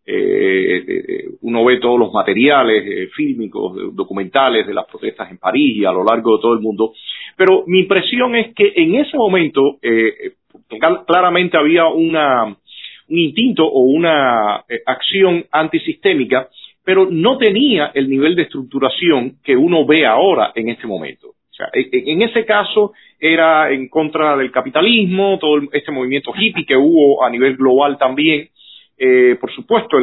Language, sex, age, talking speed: Spanish, male, 40-59, 160 wpm